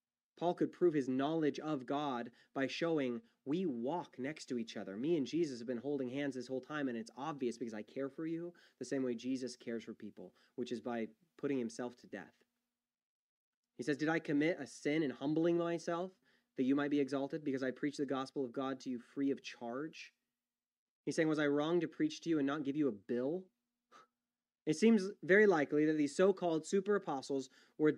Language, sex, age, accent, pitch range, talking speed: English, male, 20-39, American, 135-195 Hz, 210 wpm